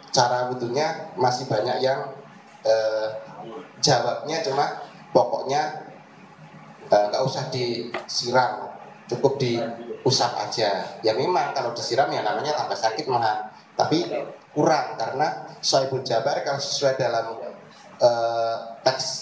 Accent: native